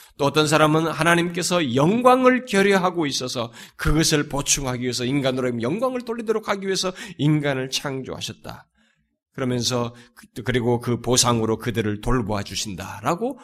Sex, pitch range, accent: male, 125-195 Hz, native